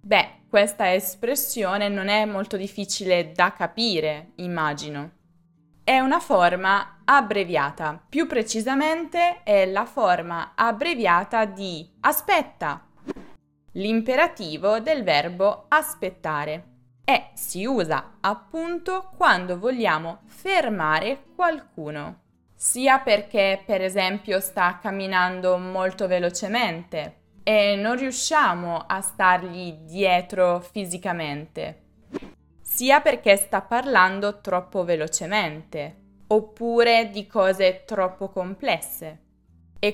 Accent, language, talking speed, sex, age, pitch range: native, Italian, 90 wpm, female, 20-39, 175-225 Hz